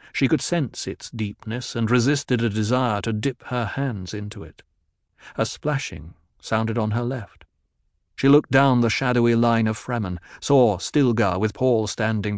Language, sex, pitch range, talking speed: English, male, 105-125 Hz, 165 wpm